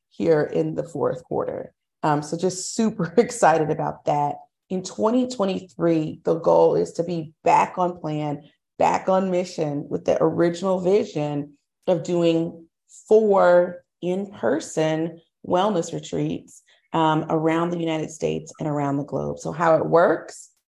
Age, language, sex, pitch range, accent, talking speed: 30-49, English, female, 160-235 Hz, American, 140 wpm